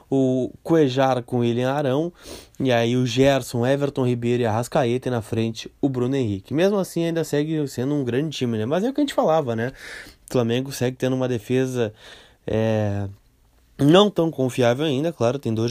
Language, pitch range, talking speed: Portuguese, 115-130 Hz, 200 wpm